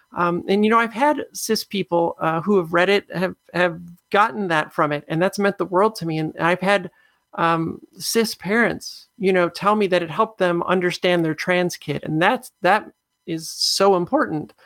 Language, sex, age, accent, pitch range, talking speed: English, male, 40-59, American, 175-205 Hz, 205 wpm